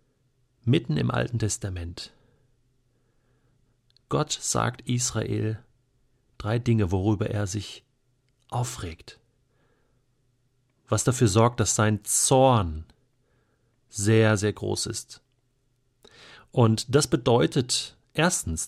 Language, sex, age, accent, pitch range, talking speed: German, male, 40-59, German, 110-130 Hz, 85 wpm